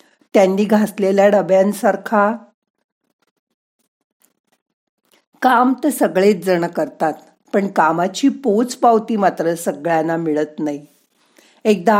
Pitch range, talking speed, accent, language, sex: 185-230 Hz, 80 wpm, native, Marathi, female